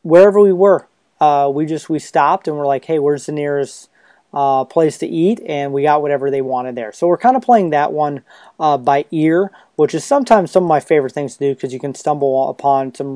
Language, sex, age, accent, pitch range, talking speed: English, male, 30-49, American, 135-170 Hz, 235 wpm